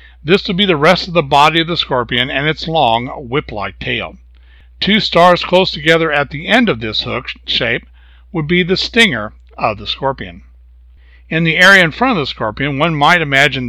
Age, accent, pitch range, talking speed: 60-79, American, 115-165 Hz, 195 wpm